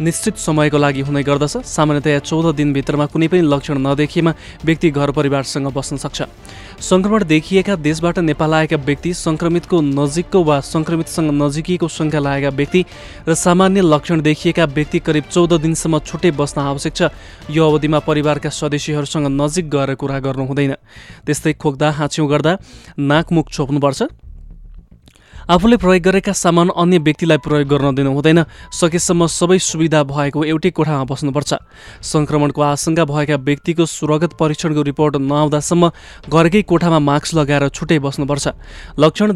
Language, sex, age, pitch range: English, male, 20-39, 145-170 Hz